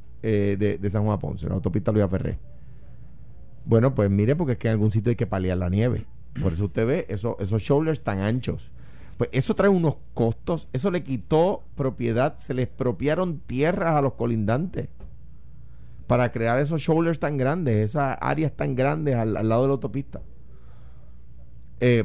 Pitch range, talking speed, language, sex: 100-140 Hz, 180 wpm, Spanish, male